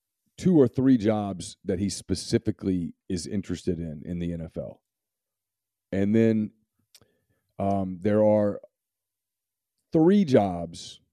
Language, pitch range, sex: English, 95-110 Hz, male